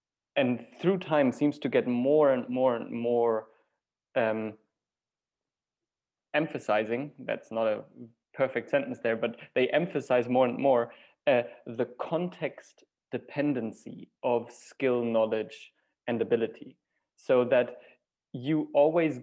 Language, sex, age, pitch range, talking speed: English, male, 20-39, 125-150 Hz, 120 wpm